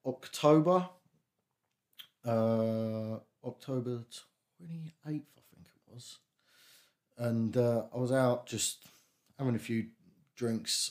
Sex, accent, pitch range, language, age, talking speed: male, British, 105-130 Hz, English, 20-39, 100 wpm